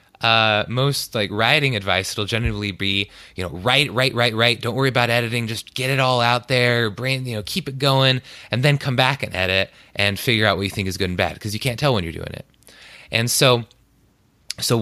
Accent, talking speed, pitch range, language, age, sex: American, 225 wpm, 100-135 Hz, English, 20-39, male